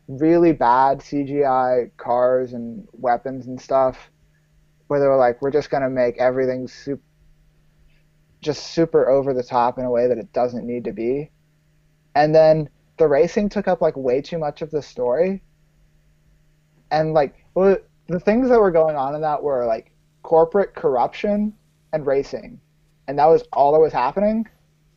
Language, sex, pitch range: English, male, 145-170 Hz